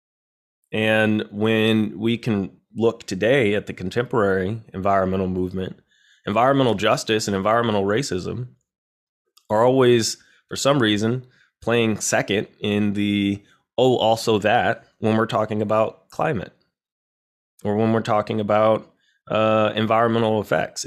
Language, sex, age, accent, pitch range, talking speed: English, male, 20-39, American, 100-115 Hz, 120 wpm